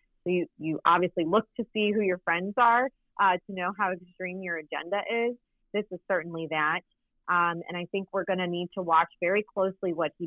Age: 30-49